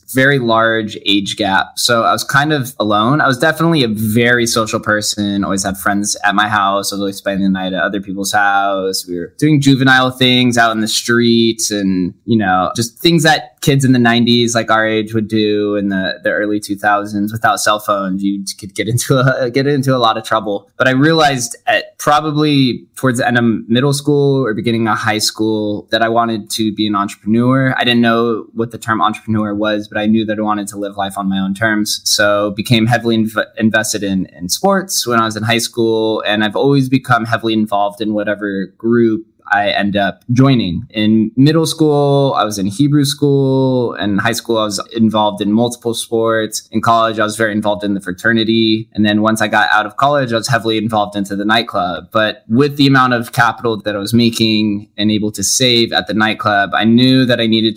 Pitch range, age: 105-120 Hz, 20-39